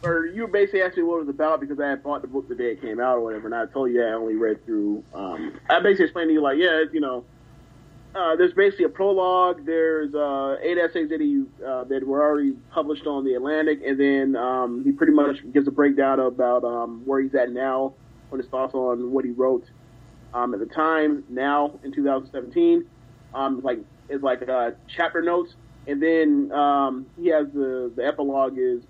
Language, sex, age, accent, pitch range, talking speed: English, male, 30-49, American, 130-160 Hz, 220 wpm